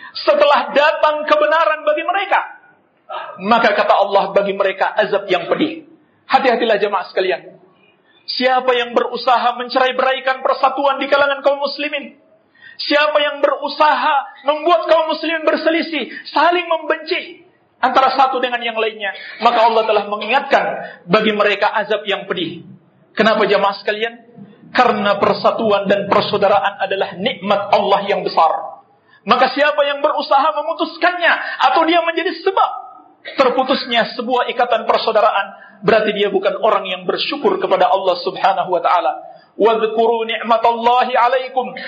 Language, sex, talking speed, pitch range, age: Indonesian, male, 130 wpm, 210-295 Hz, 40-59